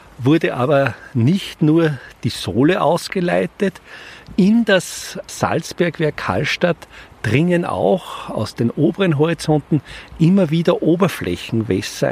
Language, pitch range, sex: German, 105-160 Hz, male